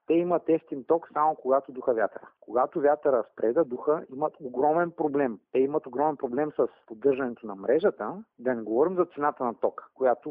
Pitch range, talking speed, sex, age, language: 120-160 Hz, 180 wpm, male, 50-69, Bulgarian